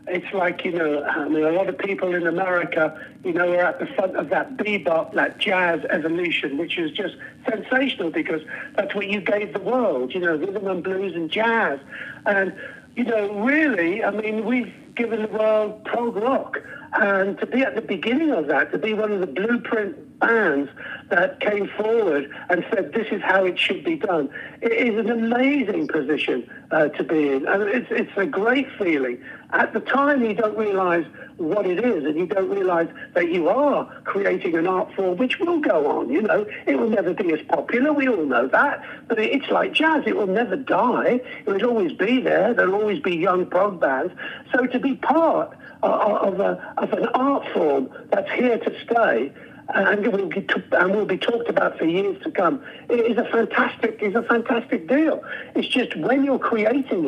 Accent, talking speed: British, 200 wpm